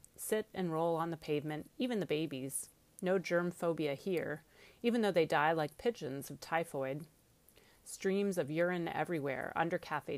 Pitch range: 150-190 Hz